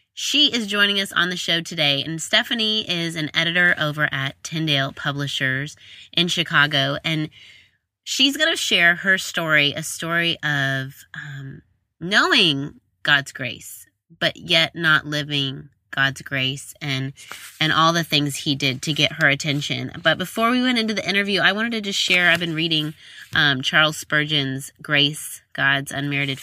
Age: 20-39